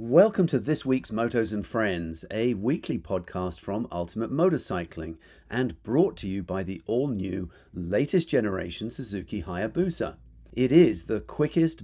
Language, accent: English, British